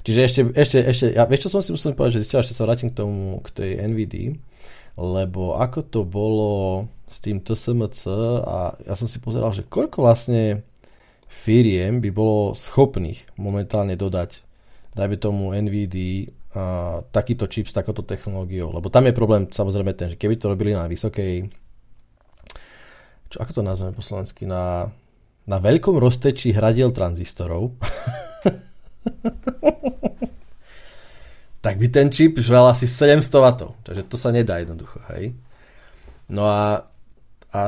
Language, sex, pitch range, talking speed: Slovak, male, 100-125 Hz, 140 wpm